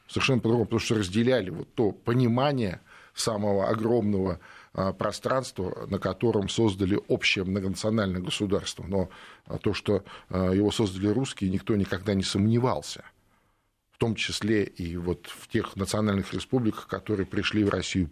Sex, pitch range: male, 95-115 Hz